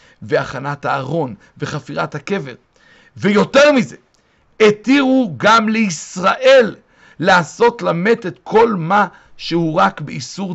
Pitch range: 140-200 Hz